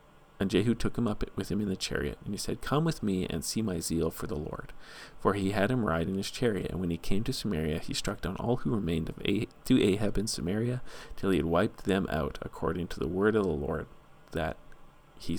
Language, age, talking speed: English, 40-59, 250 wpm